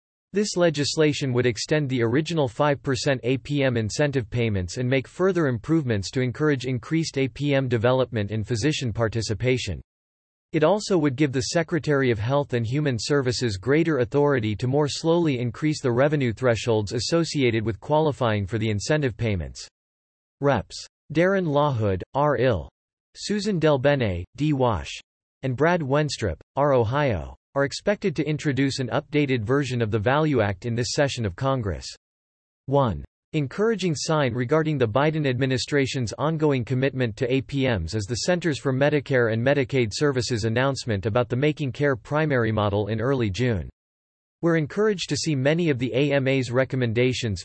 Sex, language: male, English